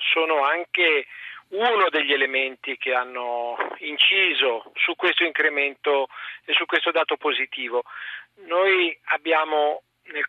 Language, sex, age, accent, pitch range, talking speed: Italian, male, 40-59, native, 145-190 Hz, 110 wpm